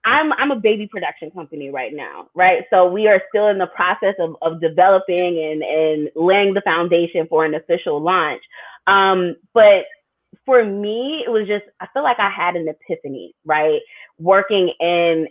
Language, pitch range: English, 170-215 Hz